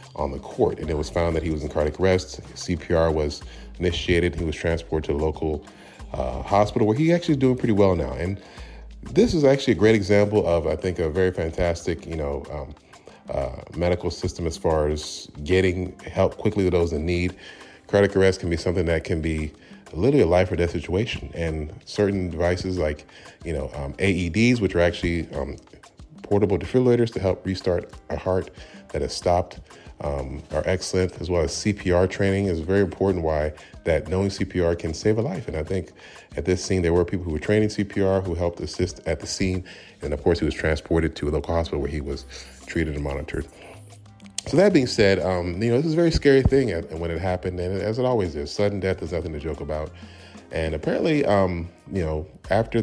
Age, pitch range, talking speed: 30-49, 80-100 Hz, 210 wpm